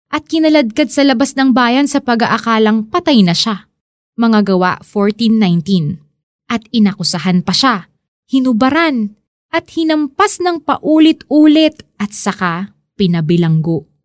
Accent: native